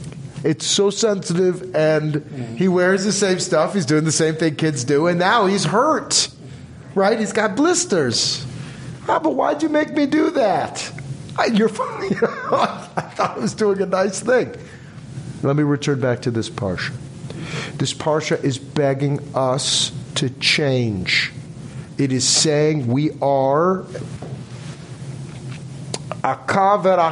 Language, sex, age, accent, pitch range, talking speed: English, male, 50-69, American, 140-165 Hz, 140 wpm